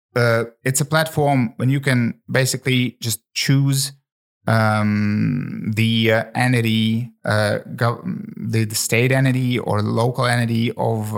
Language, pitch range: English, 110-130 Hz